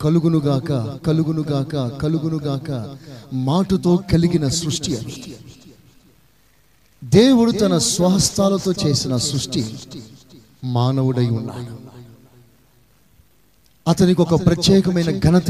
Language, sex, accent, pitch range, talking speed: Telugu, male, native, 130-185 Hz, 65 wpm